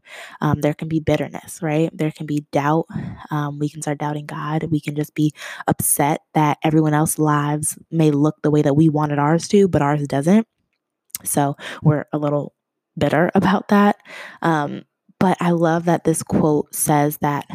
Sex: female